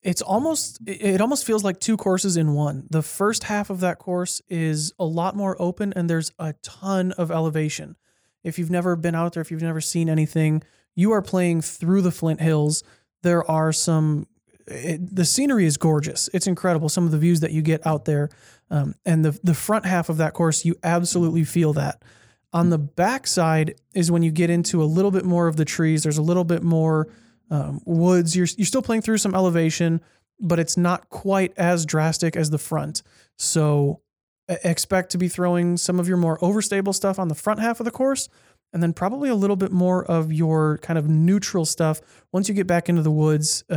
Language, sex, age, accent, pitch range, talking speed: English, male, 20-39, American, 155-180 Hz, 210 wpm